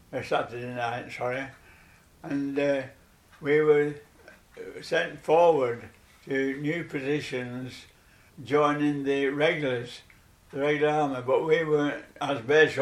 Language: English